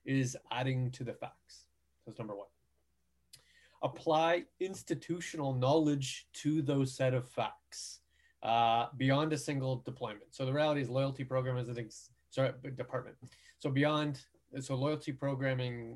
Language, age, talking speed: English, 30-49, 135 wpm